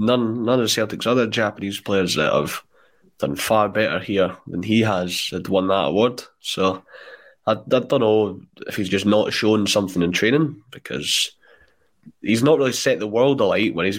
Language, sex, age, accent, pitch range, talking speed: English, male, 20-39, British, 100-125 Hz, 185 wpm